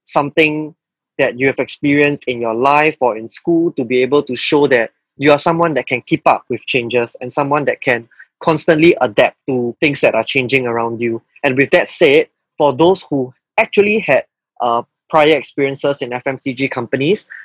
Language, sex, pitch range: English, male, 125-150 Hz